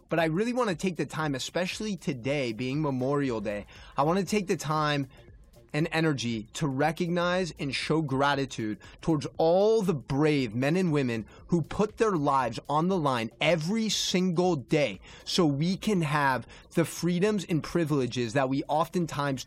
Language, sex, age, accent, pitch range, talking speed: English, male, 30-49, American, 130-165 Hz, 160 wpm